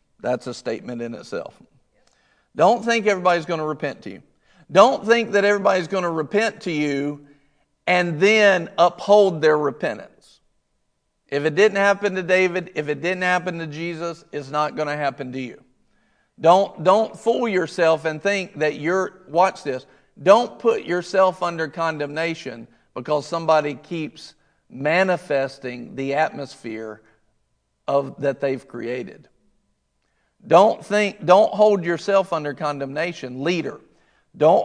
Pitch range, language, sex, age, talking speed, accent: 145-180 Hz, English, male, 50-69, 140 wpm, American